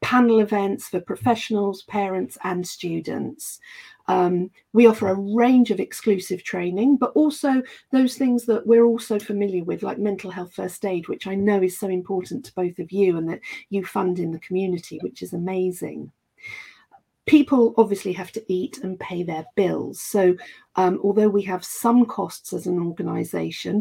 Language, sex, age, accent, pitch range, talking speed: English, female, 40-59, British, 180-225 Hz, 175 wpm